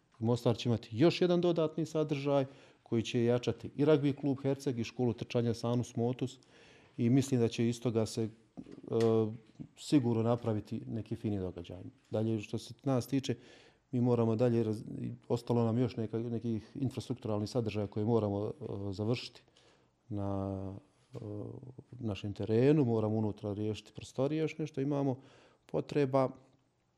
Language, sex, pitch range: Croatian, male, 110-130 Hz